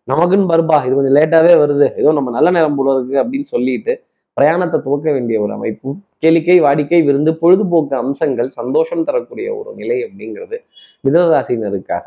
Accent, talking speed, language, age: native, 150 wpm, Tamil, 20-39